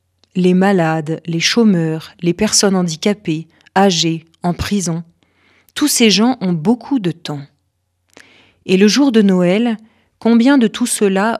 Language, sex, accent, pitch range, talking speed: French, female, French, 165-225 Hz, 135 wpm